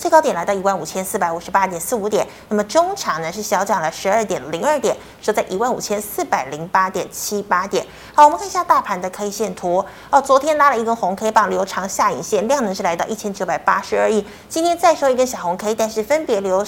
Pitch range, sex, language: 195-280 Hz, female, Chinese